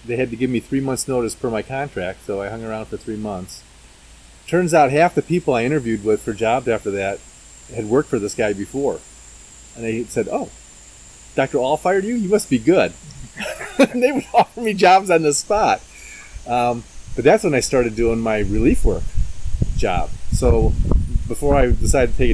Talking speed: 200 wpm